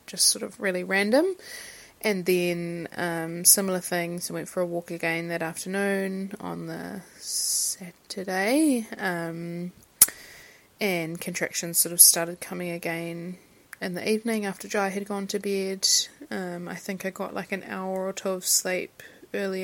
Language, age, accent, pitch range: English, 20-39, Australian, 170-195 Hz